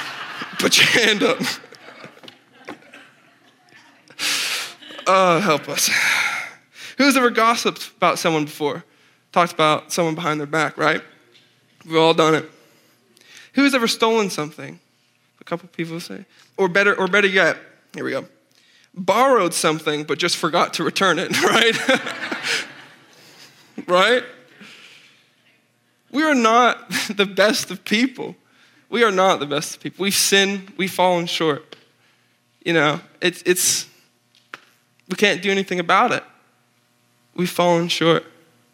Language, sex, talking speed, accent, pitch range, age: English, male, 125 wpm, American, 145-195 Hz, 20-39